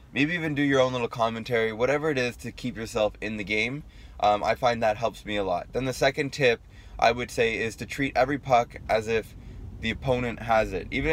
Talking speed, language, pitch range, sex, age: 230 wpm, English, 105-125 Hz, male, 20-39